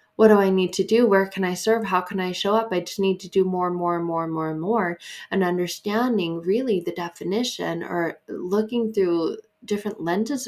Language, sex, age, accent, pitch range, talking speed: English, female, 20-39, American, 165-205 Hz, 225 wpm